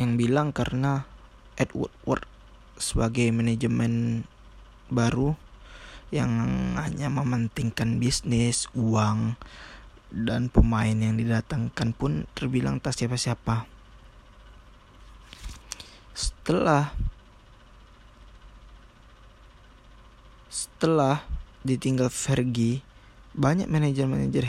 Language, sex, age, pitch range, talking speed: Indonesian, male, 20-39, 105-130 Hz, 65 wpm